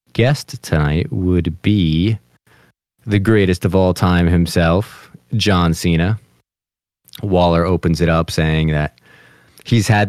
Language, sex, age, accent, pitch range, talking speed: English, male, 30-49, American, 85-105 Hz, 120 wpm